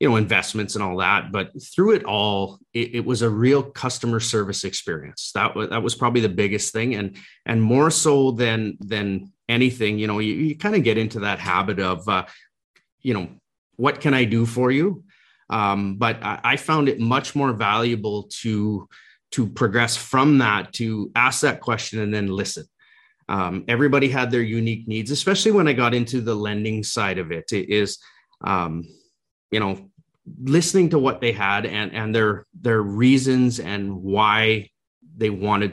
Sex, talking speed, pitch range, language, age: male, 185 wpm, 100-120 Hz, English, 30-49